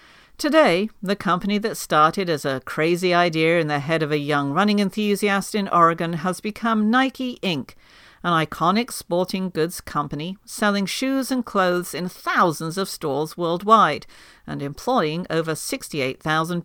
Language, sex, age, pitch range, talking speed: English, female, 50-69, 160-220 Hz, 150 wpm